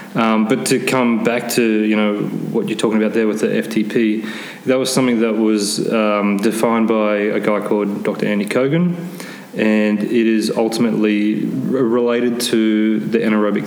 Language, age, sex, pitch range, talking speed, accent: English, 20-39, male, 105-120 Hz, 165 wpm, Australian